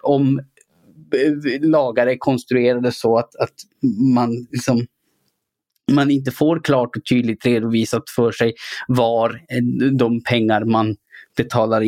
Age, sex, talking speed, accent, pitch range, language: 20-39, male, 110 wpm, Norwegian, 130-175 Hz, Swedish